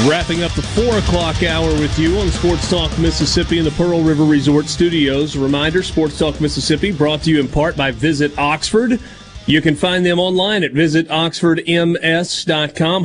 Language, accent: English, American